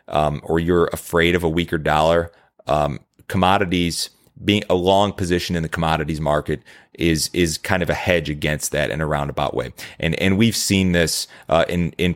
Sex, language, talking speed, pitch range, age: male, English, 190 wpm, 80-90 Hz, 30-49